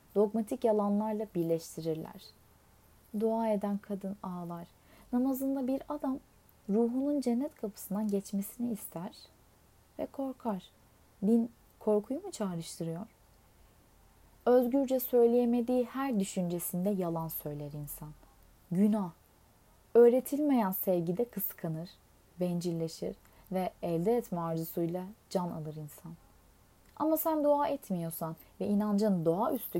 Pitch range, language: 170-245 Hz, Turkish